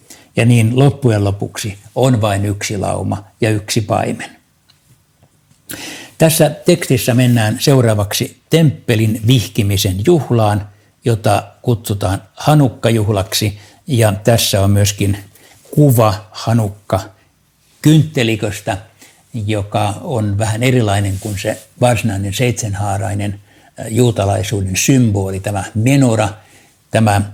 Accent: native